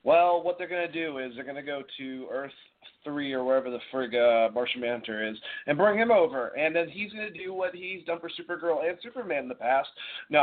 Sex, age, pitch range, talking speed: male, 30-49, 150-200 Hz, 240 wpm